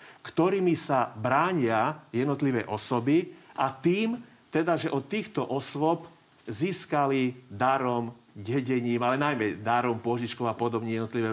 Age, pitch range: 40-59, 125-155 Hz